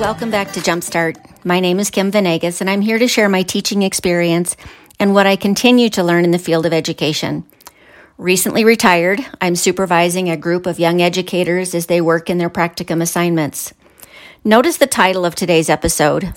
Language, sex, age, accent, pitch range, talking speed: English, female, 50-69, American, 170-210 Hz, 185 wpm